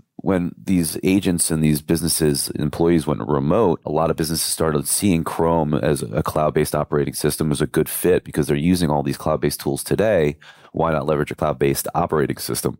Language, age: English, 30-49